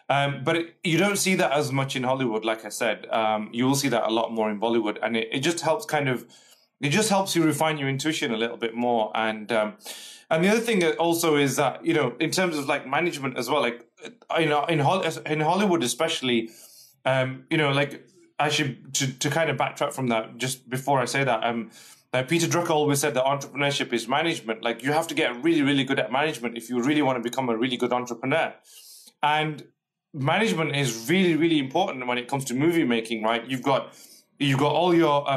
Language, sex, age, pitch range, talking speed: English, male, 20-39, 125-160 Hz, 230 wpm